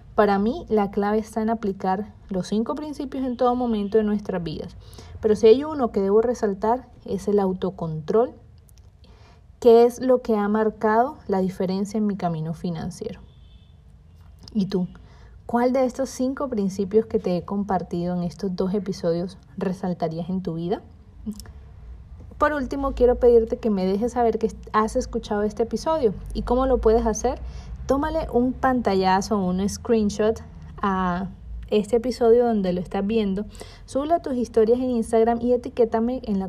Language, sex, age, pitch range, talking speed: Spanish, female, 30-49, 190-240 Hz, 160 wpm